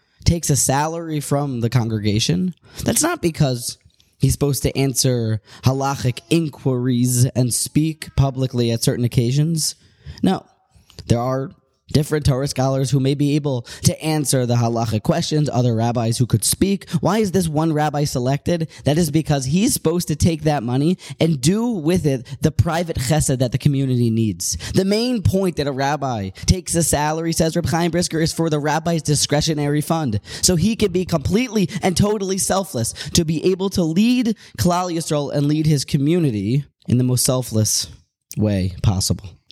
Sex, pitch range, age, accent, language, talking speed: male, 125-165 Hz, 20-39, American, English, 170 wpm